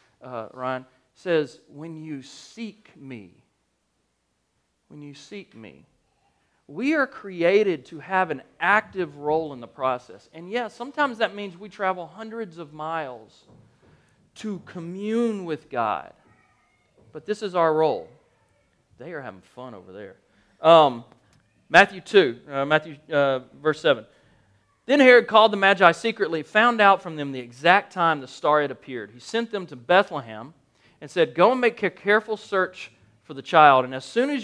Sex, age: male, 40-59